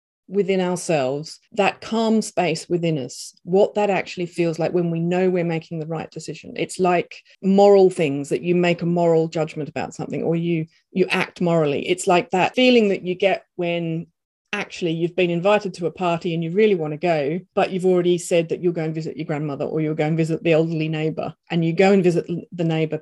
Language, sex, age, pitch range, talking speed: English, female, 40-59, 165-210 Hz, 220 wpm